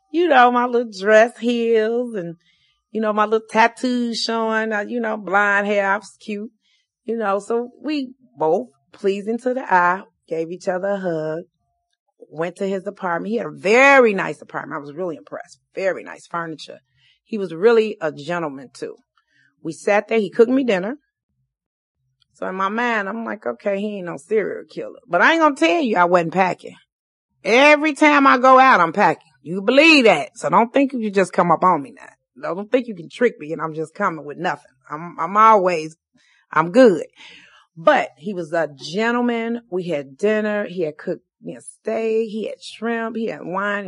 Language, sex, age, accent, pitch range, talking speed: English, female, 40-59, American, 170-235 Hz, 200 wpm